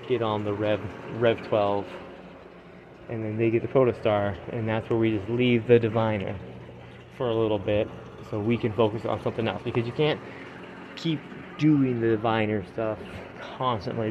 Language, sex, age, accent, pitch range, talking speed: English, male, 20-39, American, 110-120 Hz, 170 wpm